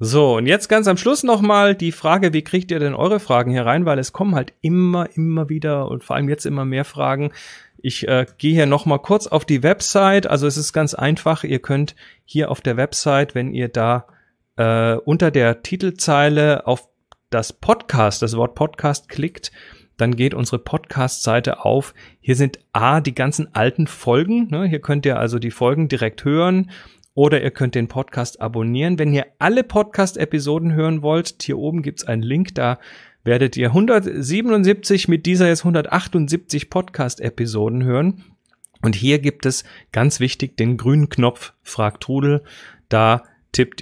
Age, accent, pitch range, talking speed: 30-49, German, 120-160 Hz, 175 wpm